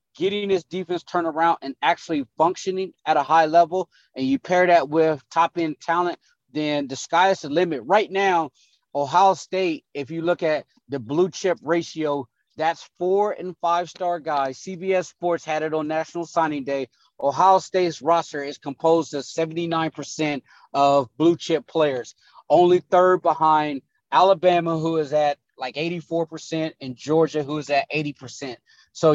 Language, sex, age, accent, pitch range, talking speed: English, male, 30-49, American, 145-175 Hz, 155 wpm